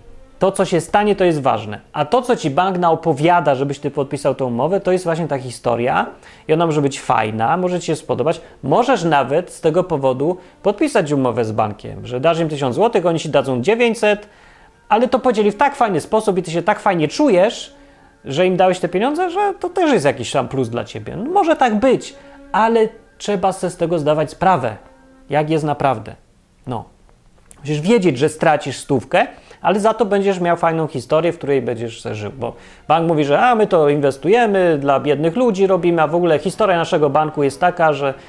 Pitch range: 135-200 Hz